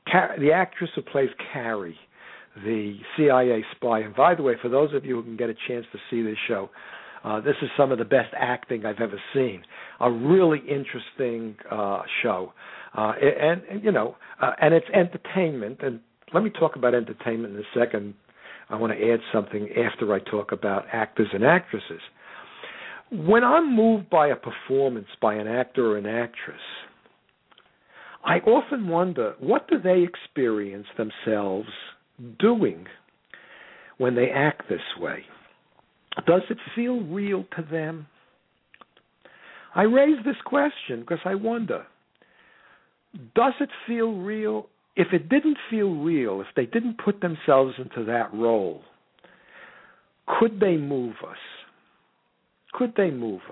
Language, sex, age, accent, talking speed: English, male, 60-79, American, 150 wpm